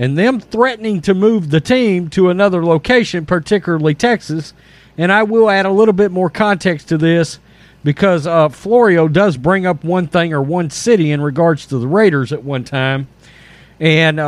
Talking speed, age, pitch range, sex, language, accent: 180 wpm, 40-59, 155-205 Hz, male, English, American